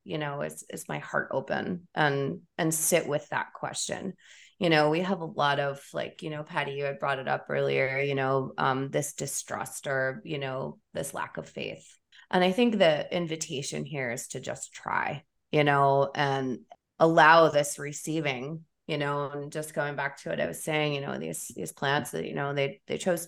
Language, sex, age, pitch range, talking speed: English, female, 20-39, 135-155 Hz, 205 wpm